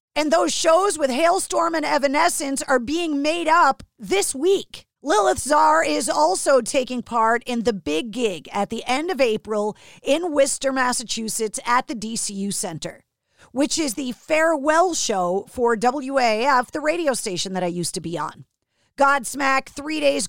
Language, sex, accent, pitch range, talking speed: English, female, American, 225-295 Hz, 160 wpm